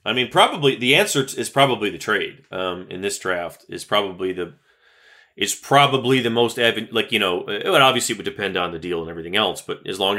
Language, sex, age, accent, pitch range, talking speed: English, male, 30-49, American, 115-135 Hz, 230 wpm